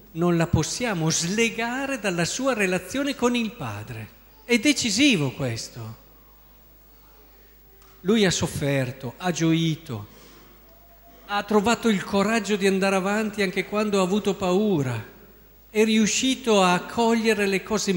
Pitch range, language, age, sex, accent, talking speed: 160-230 Hz, Italian, 50-69, male, native, 120 wpm